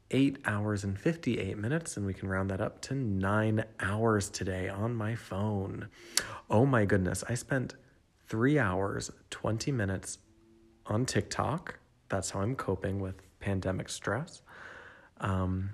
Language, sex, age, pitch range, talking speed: English, male, 30-49, 95-115 Hz, 140 wpm